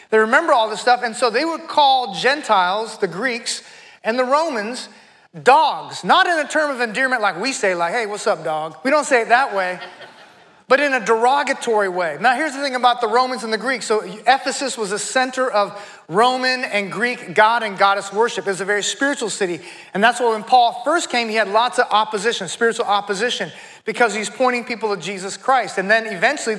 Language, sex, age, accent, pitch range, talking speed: English, male, 30-49, American, 215-260 Hz, 215 wpm